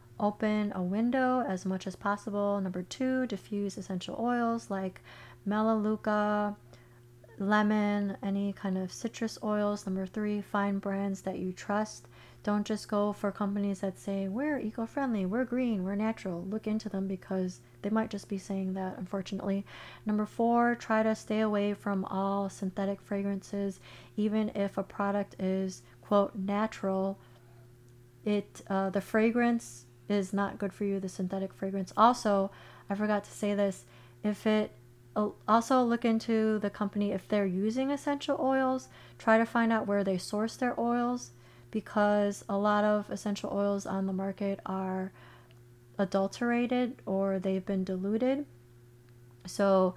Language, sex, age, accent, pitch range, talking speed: English, female, 30-49, American, 190-215 Hz, 150 wpm